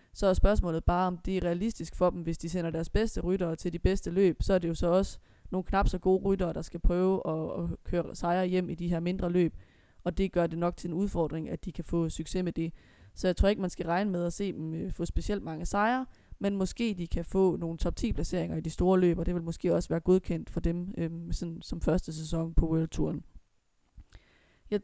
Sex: female